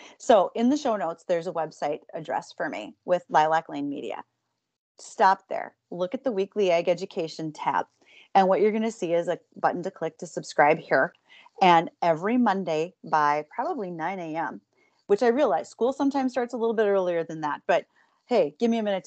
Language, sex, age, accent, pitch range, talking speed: English, female, 30-49, American, 160-225 Hz, 200 wpm